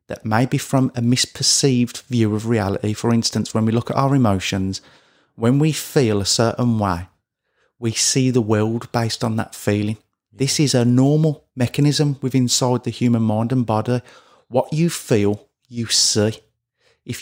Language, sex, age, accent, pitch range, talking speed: English, male, 30-49, British, 110-135 Hz, 170 wpm